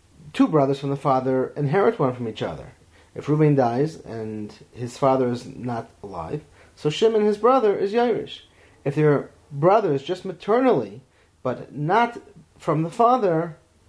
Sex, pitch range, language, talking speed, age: male, 120-170 Hz, English, 155 wpm, 30-49